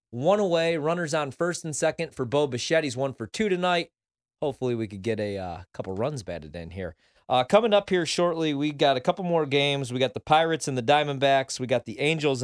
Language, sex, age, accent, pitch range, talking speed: English, male, 30-49, American, 120-160 Hz, 230 wpm